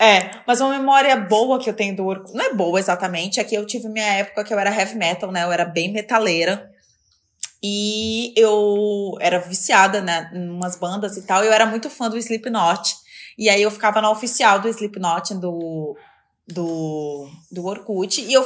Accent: Brazilian